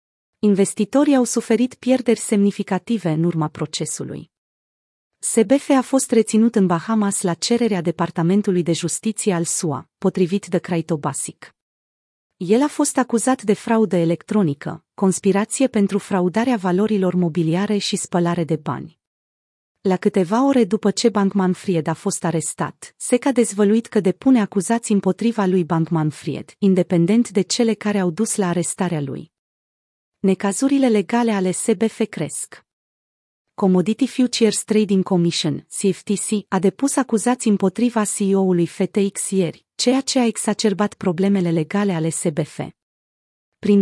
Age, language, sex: 30-49, Romanian, female